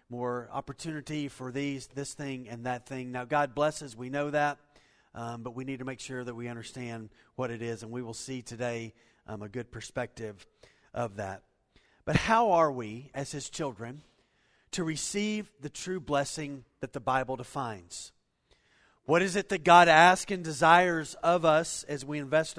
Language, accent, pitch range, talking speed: English, American, 130-175 Hz, 180 wpm